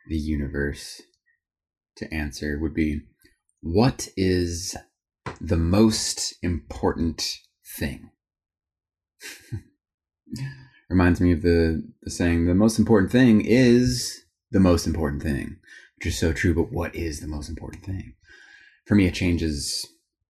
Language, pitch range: English, 80-110 Hz